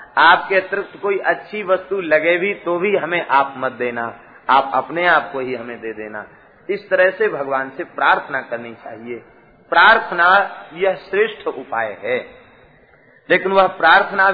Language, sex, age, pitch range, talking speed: Hindi, male, 40-59, 130-180 Hz, 155 wpm